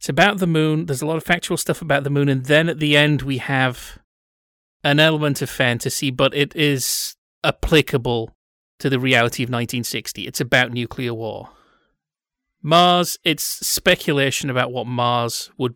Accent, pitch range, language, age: British, 120-150 Hz, English, 30-49